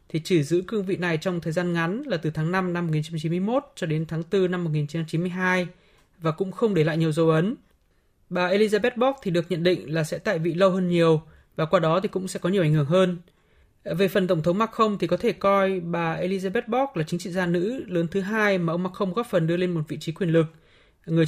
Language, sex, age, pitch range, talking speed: Vietnamese, male, 20-39, 165-200 Hz, 250 wpm